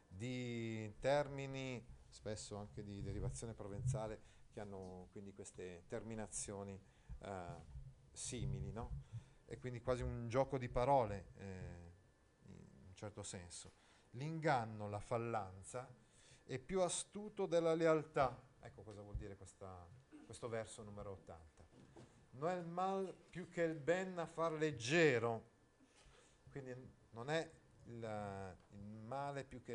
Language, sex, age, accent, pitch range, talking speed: Italian, male, 40-59, native, 105-150 Hz, 125 wpm